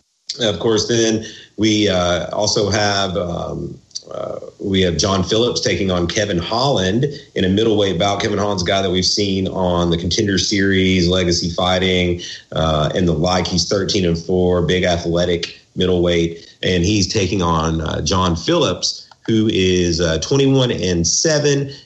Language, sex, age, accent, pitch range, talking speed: English, male, 40-59, American, 90-105 Hz, 160 wpm